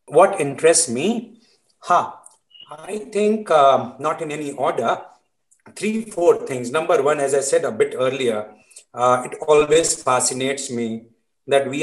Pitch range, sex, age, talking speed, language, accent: 125-170 Hz, male, 50-69, 145 wpm, English, Indian